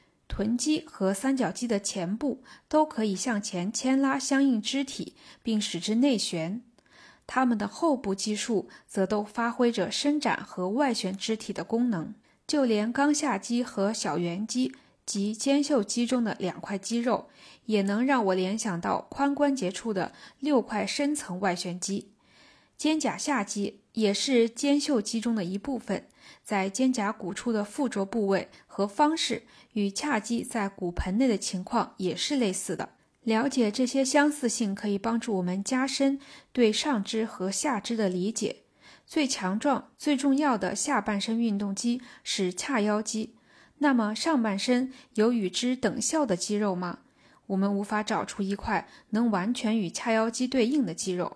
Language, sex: Chinese, female